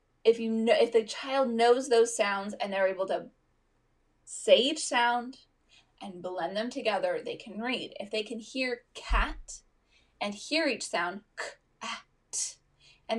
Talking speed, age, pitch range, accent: 150 wpm, 20-39, 195-260 Hz, American